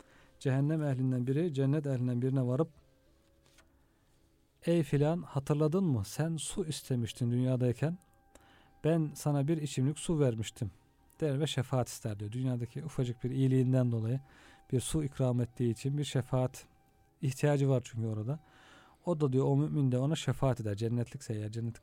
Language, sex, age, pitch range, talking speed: Turkish, male, 40-59, 120-145 Hz, 150 wpm